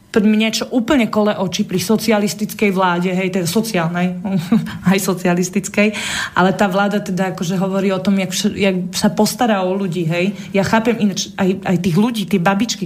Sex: female